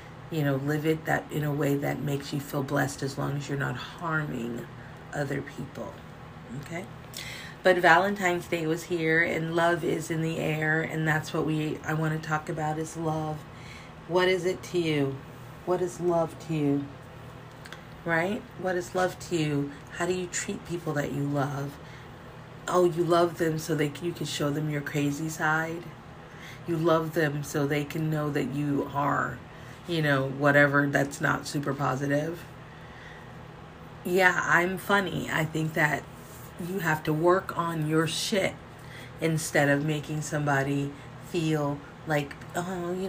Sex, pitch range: female, 140-165 Hz